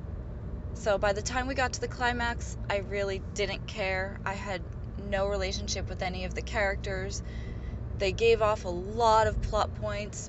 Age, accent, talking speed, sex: 20-39, American, 175 wpm, female